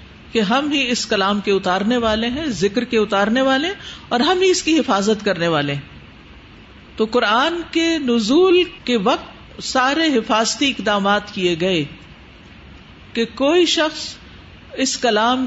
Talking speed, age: 140 wpm, 50-69